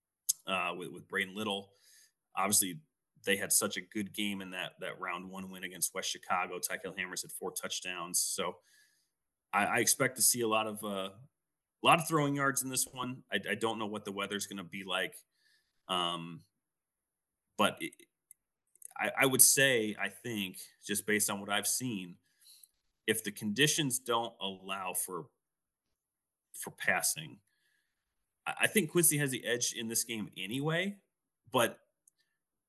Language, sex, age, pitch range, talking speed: English, male, 30-49, 95-115 Hz, 160 wpm